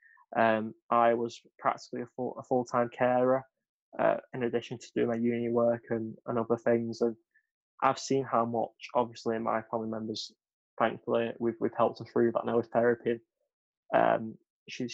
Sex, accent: male, British